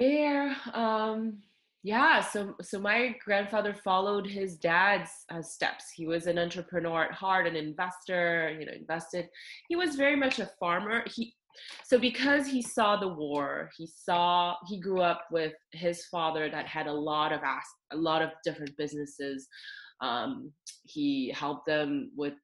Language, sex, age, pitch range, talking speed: English, female, 20-39, 150-200 Hz, 160 wpm